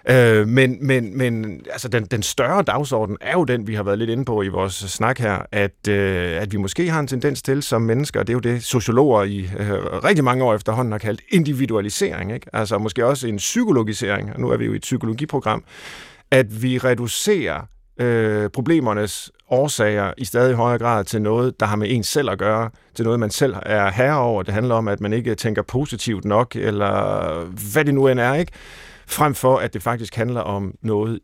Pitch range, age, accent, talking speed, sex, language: 100-130 Hz, 50-69, native, 215 wpm, male, Danish